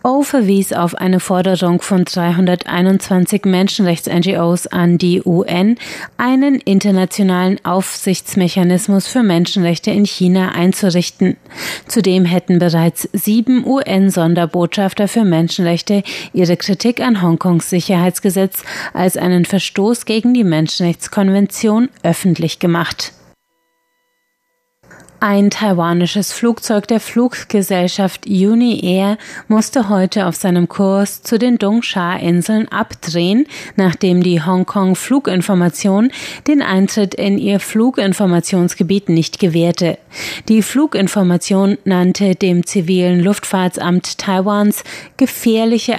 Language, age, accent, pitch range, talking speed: German, 30-49, German, 175-210 Hz, 100 wpm